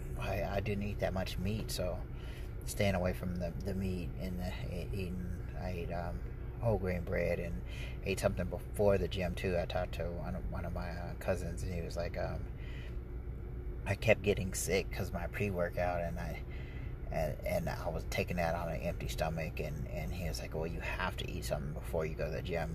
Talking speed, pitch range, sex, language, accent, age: 215 wpm, 65-90 Hz, male, English, American, 30-49